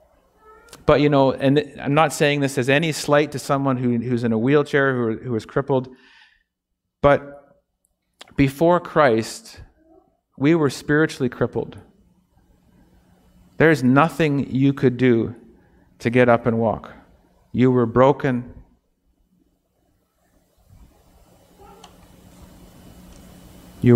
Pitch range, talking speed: 120-150 Hz, 110 wpm